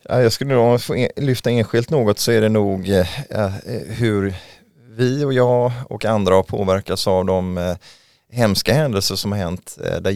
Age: 20-39